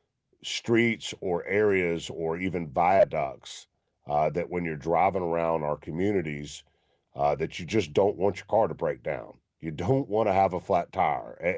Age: 50-69